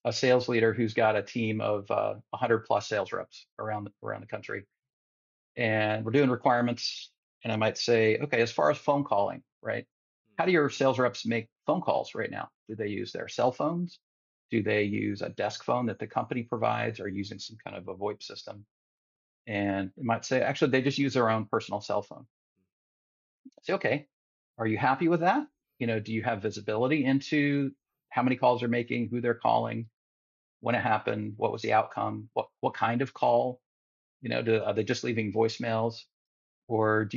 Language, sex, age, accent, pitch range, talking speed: English, male, 40-59, American, 105-125 Hz, 200 wpm